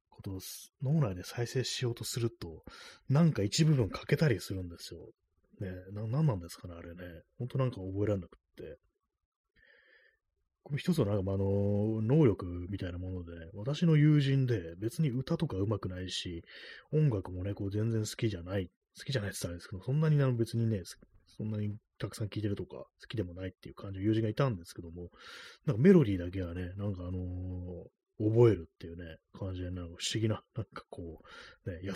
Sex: male